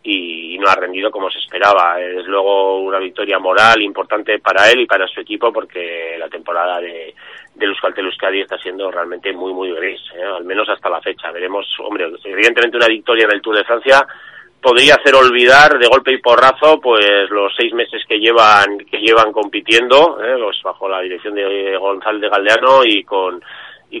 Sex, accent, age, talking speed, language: male, Spanish, 30-49, 185 wpm, Spanish